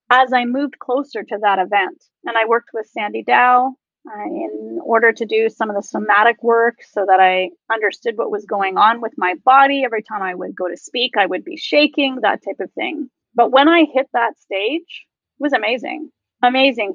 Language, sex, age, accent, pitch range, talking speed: English, female, 30-49, American, 220-310 Hz, 205 wpm